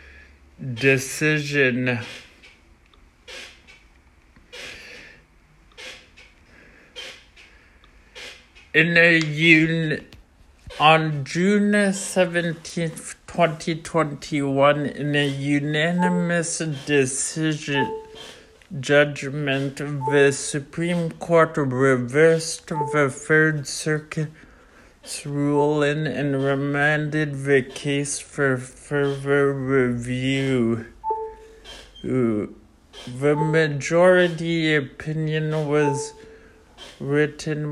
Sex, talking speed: male, 55 wpm